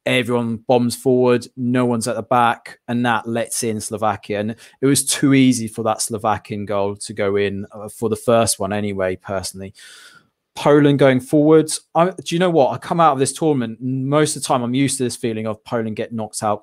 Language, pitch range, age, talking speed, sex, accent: English, 115-130 Hz, 20-39, 215 wpm, male, British